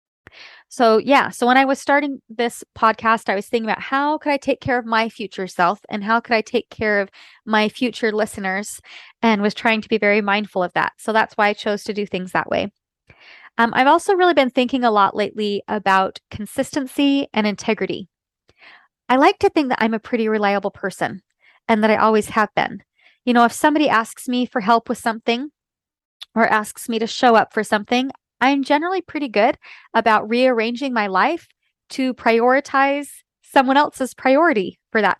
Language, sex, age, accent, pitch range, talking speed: English, female, 20-39, American, 210-275 Hz, 195 wpm